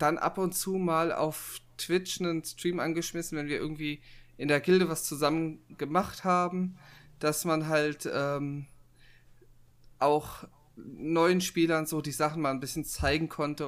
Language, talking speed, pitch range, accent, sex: German, 155 wpm, 125-155 Hz, German, male